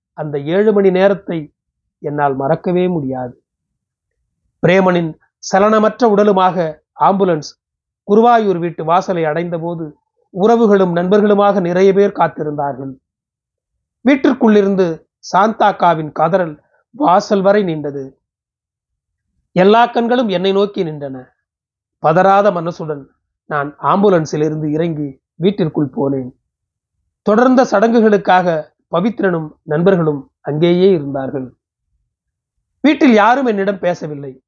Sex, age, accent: male, 30-49, native